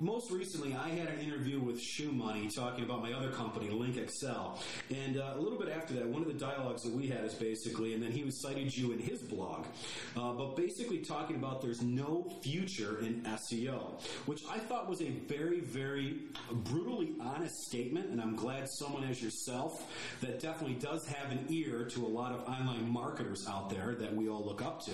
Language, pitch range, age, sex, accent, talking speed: English, 115-140 Hz, 40-59, male, American, 205 wpm